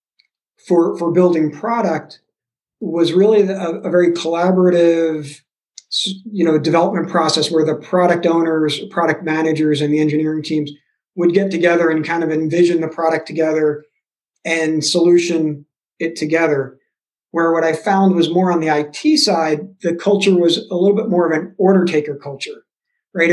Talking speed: 155 wpm